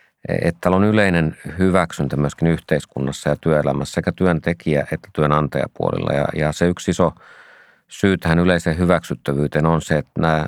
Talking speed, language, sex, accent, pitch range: 135 wpm, Finnish, male, native, 70-85 Hz